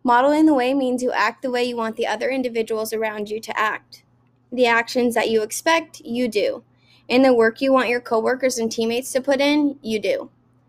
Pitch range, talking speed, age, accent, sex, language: 215-250 Hz, 215 wpm, 20-39, American, female, English